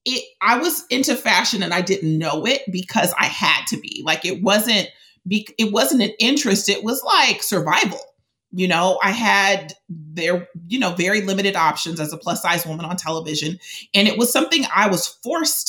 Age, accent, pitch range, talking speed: 30-49, American, 160-205 Hz, 185 wpm